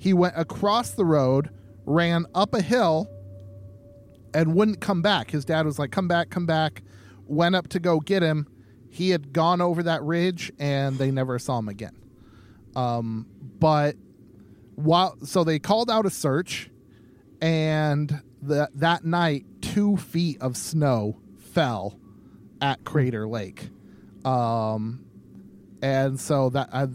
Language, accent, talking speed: English, American, 145 wpm